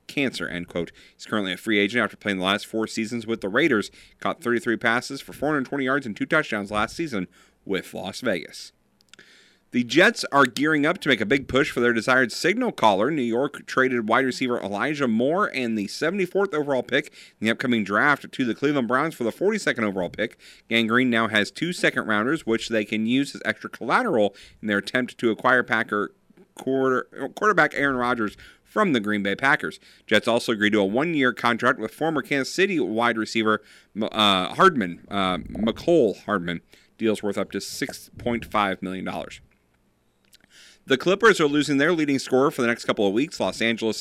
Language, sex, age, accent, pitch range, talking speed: English, male, 40-59, American, 105-130 Hz, 200 wpm